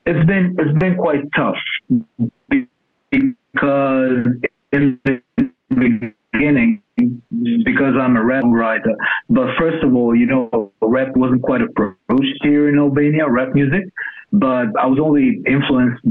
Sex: male